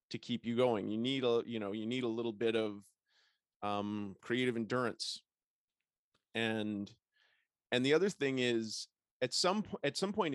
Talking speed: 170 wpm